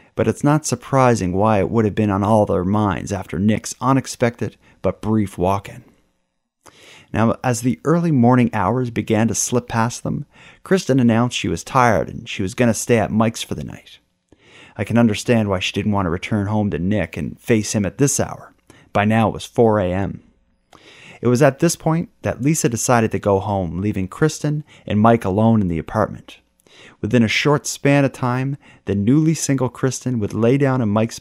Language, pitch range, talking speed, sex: English, 100-130 Hz, 200 wpm, male